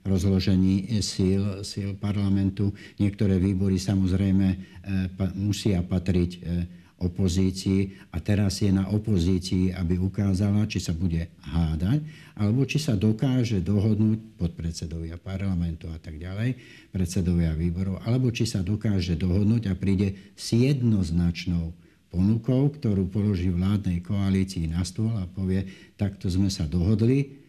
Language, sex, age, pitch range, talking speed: Slovak, male, 60-79, 85-105 Hz, 120 wpm